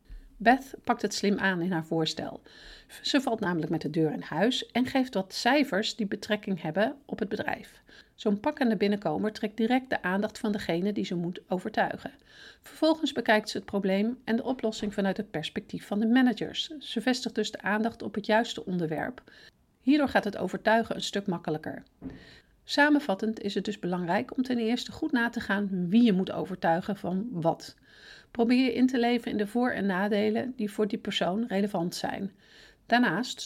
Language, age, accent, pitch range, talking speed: Dutch, 50-69, Dutch, 195-245 Hz, 185 wpm